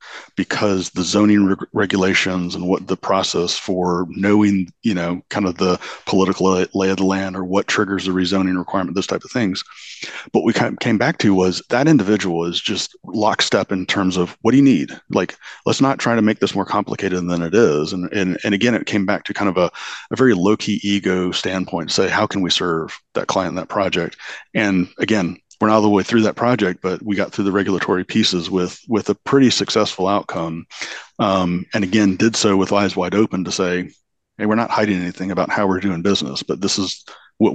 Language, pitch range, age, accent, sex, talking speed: English, 90-105 Hz, 30-49, American, male, 220 wpm